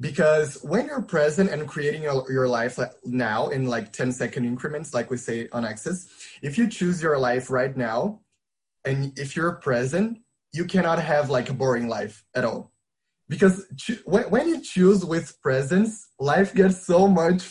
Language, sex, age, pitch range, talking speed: English, male, 20-39, 130-180 Hz, 170 wpm